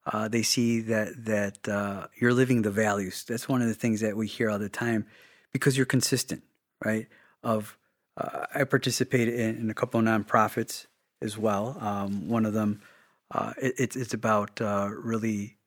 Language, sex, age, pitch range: English, male, 30-49, 110-130 Hz